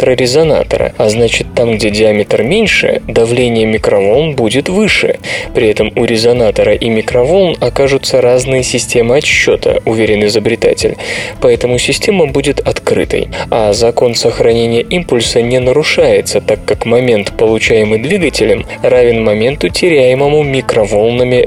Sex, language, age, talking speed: male, Russian, 20-39, 115 wpm